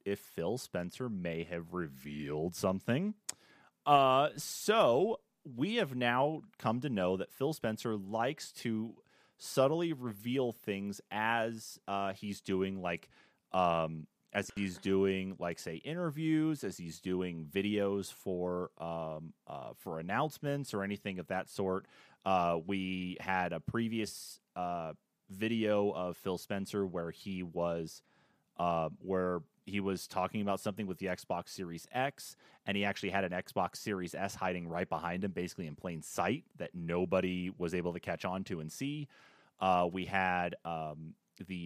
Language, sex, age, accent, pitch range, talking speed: English, male, 30-49, American, 85-105 Hz, 150 wpm